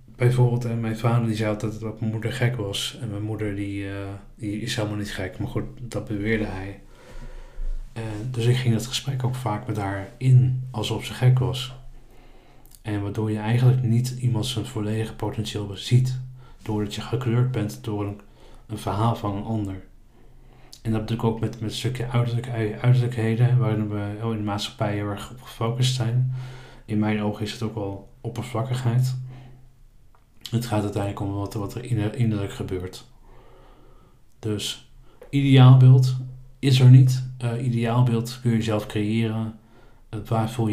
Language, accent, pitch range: Dutch, Dutch, 105-125 Hz